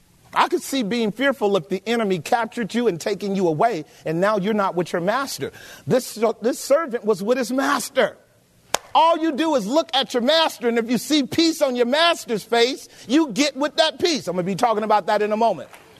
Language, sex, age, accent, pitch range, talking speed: English, male, 40-59, American, 195-255 Hz, 225 wpm